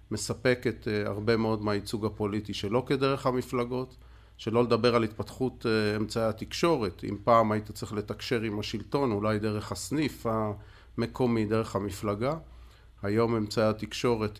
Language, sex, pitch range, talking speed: Hebrew, male, 105-120 Hz, 125 wpm